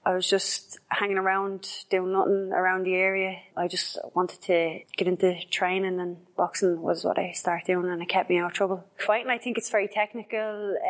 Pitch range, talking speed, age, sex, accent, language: 175-195 Hz, 205 wpm, 20-39, female, Irish, English